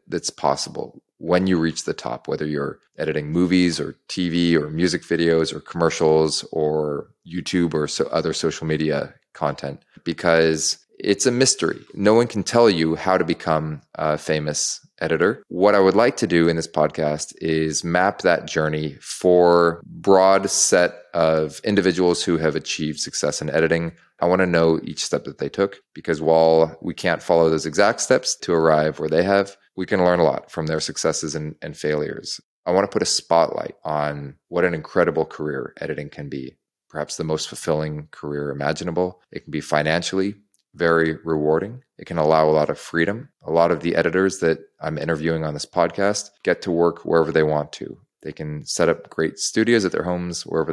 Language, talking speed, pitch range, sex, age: English, 190 wpm, 75-90 Hz, male, 30-49